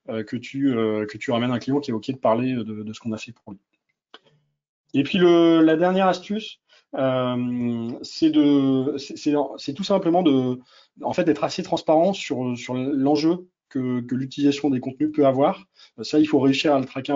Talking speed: 205 wpm